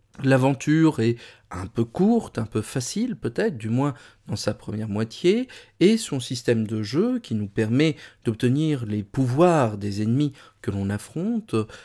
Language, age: French, 40-59